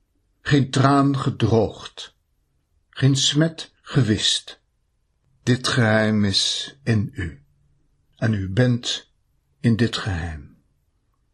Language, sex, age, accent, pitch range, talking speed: Dutch, male, 60-79, Dutch, 90-145 Hz, 90 wpm